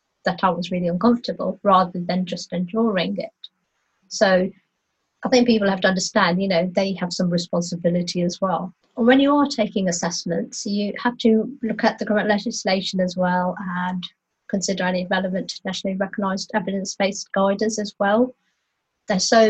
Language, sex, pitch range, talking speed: English, female, 180-215 Hz, 160 wpm